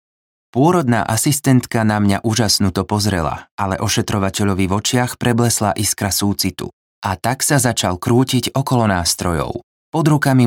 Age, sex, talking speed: 20-39, male, 125 wpm